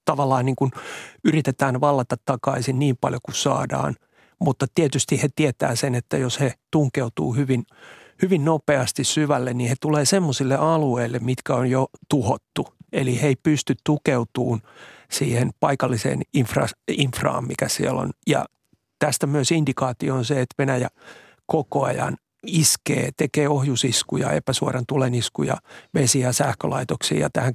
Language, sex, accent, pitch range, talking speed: Finnish, male, native, 130-150 Hz, 135 wpm